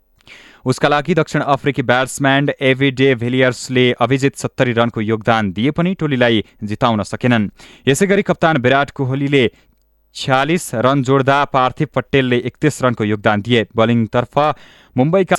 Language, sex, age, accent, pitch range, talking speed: English, male, 20-39, Indian, 115-145 Hz, 105 wpm